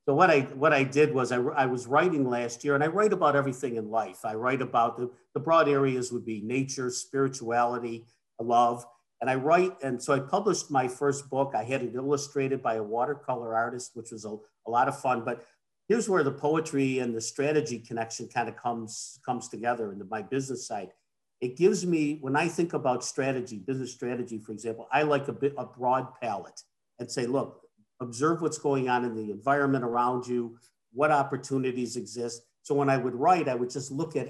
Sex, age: male, 50-69